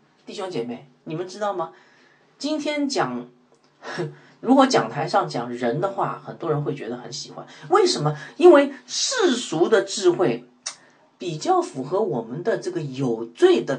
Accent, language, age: native, Chinese, 40-59